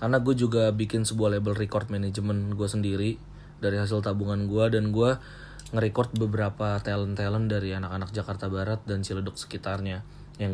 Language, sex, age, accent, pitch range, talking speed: Indonesian, male, 30-49, native, 105-130 Hz, 160 wpm